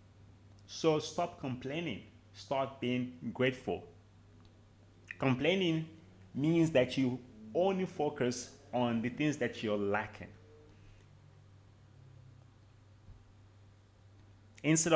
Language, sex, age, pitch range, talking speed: English, male, 30-49, 100-135 Hz, 75 wpm